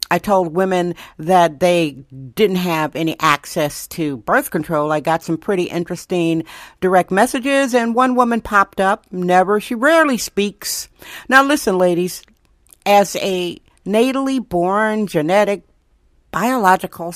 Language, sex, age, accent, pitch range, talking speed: English, female, 60-79, American, 175-225 Hz, 130 wpm